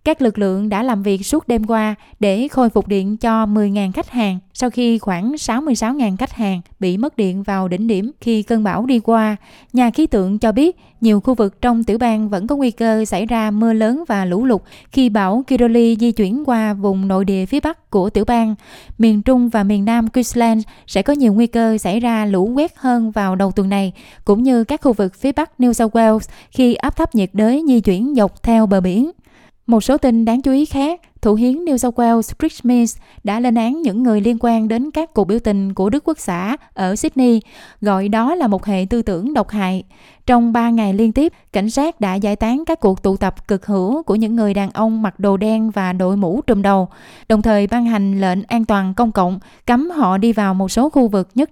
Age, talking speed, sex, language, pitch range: 20-39, 230 wpm, female, Vietnamese, 200-245 Hz